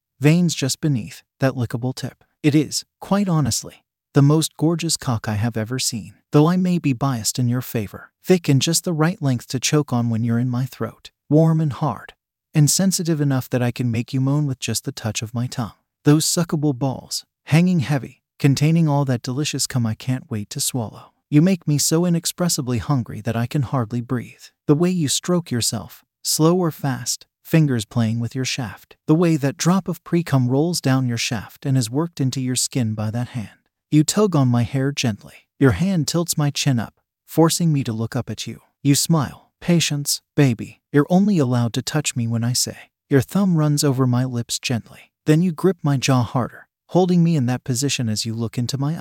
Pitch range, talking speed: 120-155 Hz, 210 wpm